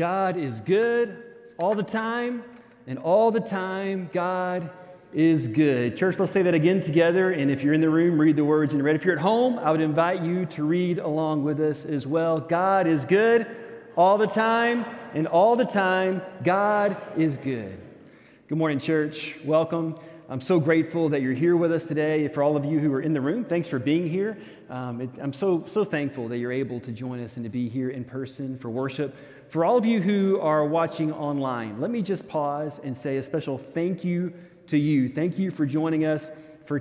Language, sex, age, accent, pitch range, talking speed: English, male, 30-49, American, 135-175 Hz, 210 wpm